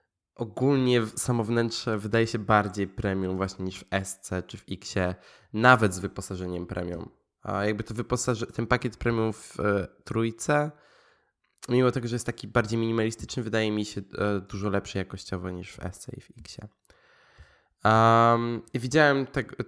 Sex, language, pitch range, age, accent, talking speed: male, Polish, 100-125 Hz, 20-39, native, 160 wpm